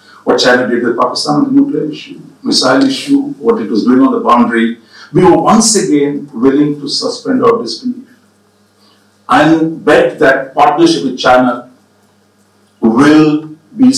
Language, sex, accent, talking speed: English, male, Indian, 145 wpm